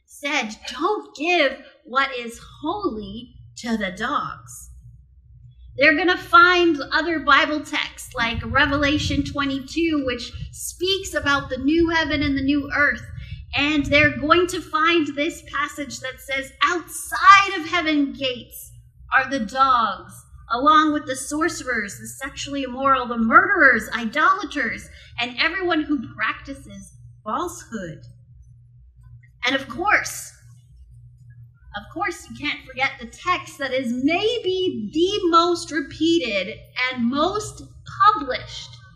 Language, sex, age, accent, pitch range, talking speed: English, female, 30-49, American, 225-320 Hz, 120 wpm